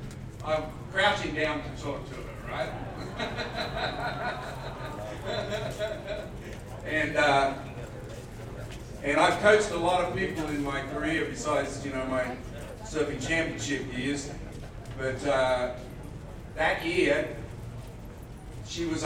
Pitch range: 125-160 Hz